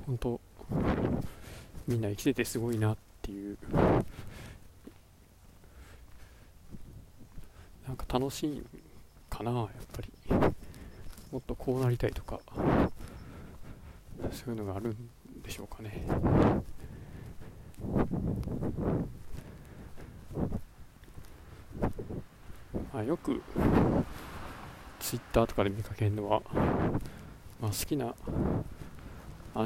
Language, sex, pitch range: Japanese, male, 100-120 Hz